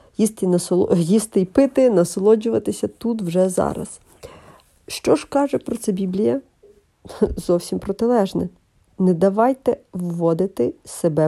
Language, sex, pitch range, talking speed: Ukrainian, female, 180-240 Hz, 105 wpm